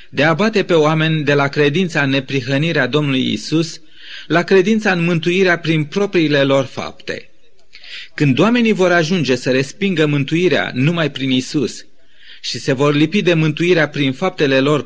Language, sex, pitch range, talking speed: Romanian, male, 140-175 Hz, 160 wpm